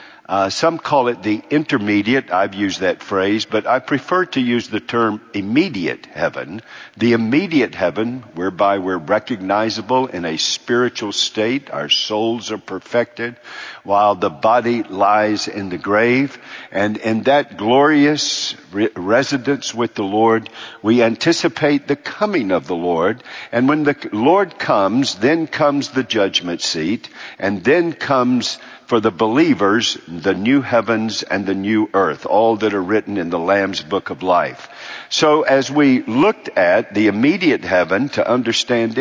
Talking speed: 150 wpm